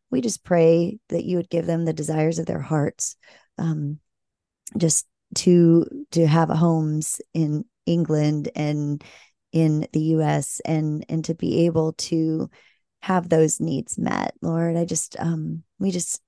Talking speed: 155 wpm